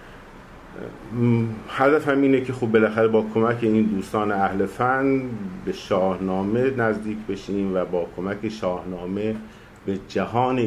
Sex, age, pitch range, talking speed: male, 50-69, 95-120 Hz, 125 wpm